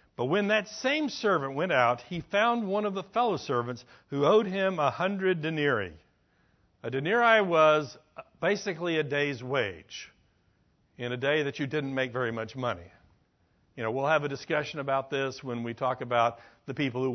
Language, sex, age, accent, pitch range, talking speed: English, male, 60-79, American, 125-195 Hz, 180 wpm